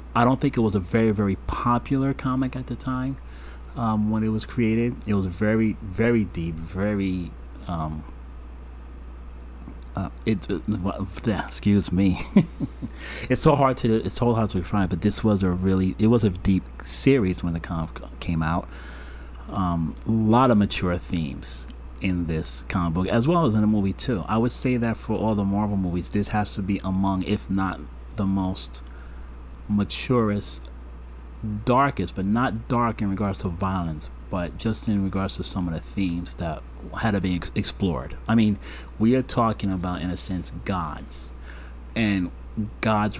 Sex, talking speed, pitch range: male, 170 wpm, 70-105 Hz